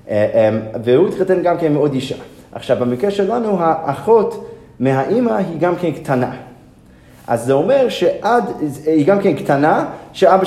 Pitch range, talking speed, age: 135-195 Hz, 150 wpm, 30-49